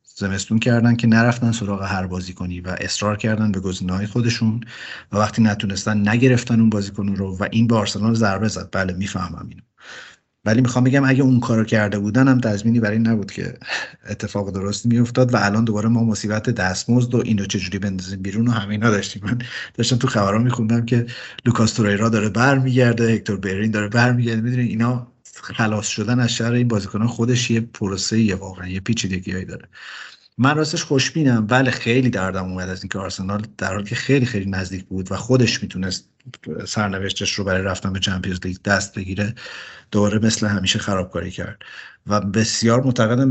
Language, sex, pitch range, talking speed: Persian, male, 100-120 Hz, 175 wpm